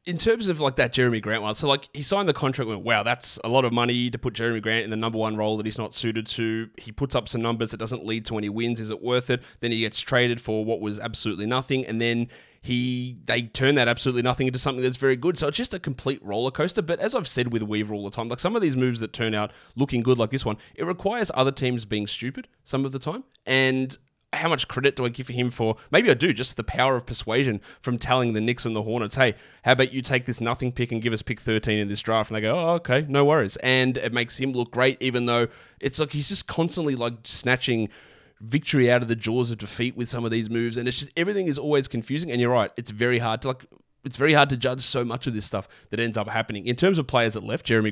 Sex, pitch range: male, 110-135 Hz